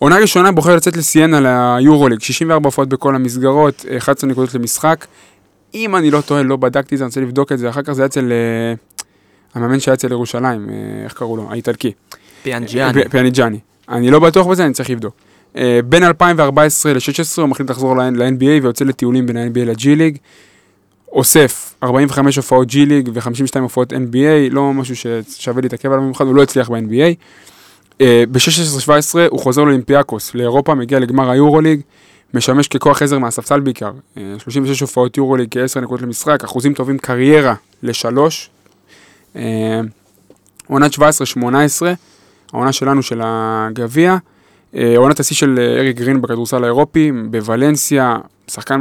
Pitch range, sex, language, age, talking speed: 120-145 Hz, male, Hebrew, 20-39, 140 wpm